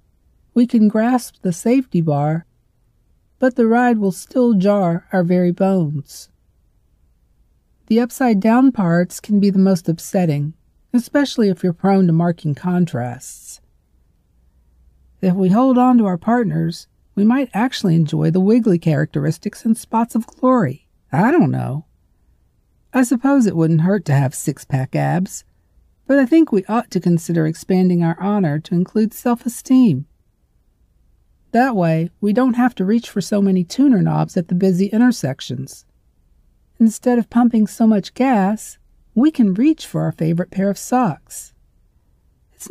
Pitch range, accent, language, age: 145-230 Hz, American, English, 50-69